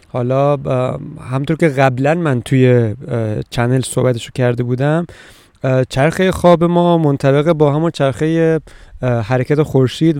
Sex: male